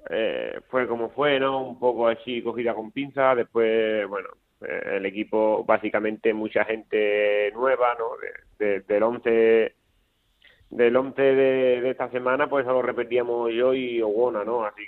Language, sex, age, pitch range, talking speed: Spanish, male, 30-49, 110-130 Hz, 160 wpm